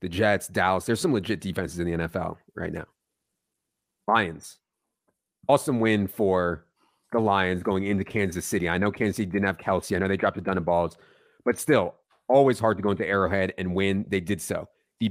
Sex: male